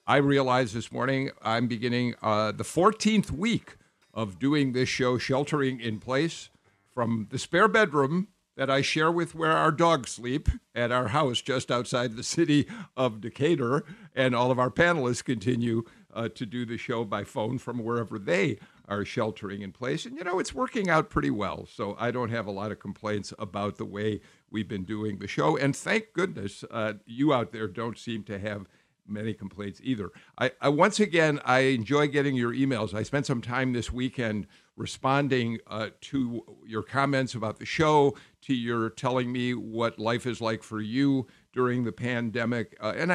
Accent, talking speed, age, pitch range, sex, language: American, 185 wpm, 50-69, 110-140 Hz, male, English